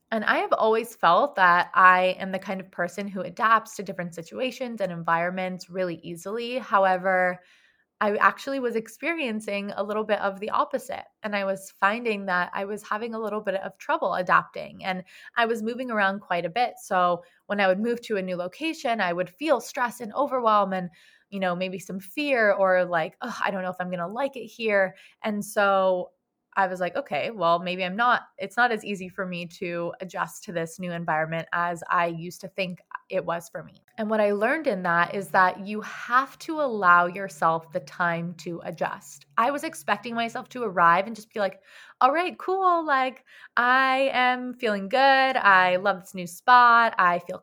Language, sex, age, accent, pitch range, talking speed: English, female, 20-39, American, 185-235 Hz, 205 wpm